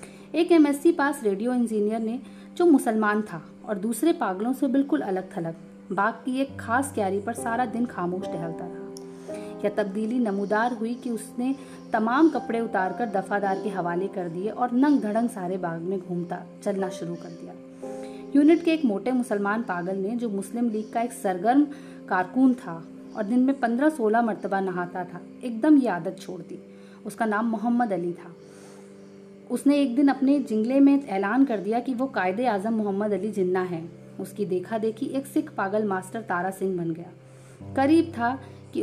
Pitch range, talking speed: 180-245 Hz, 180 wpm